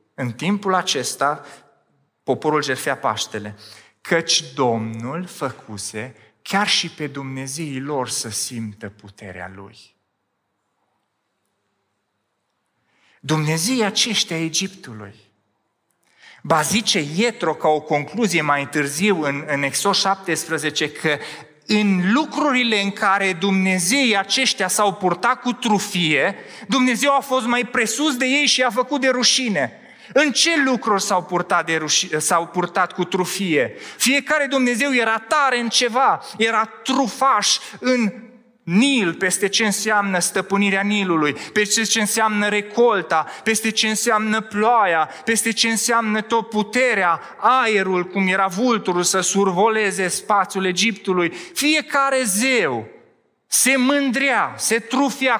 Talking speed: 120 wpm